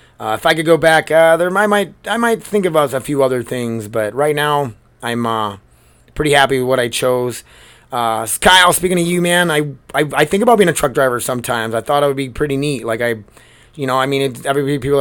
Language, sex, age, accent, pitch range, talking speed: English, male, 30-49, American, 115-155 Hz, 245 wpm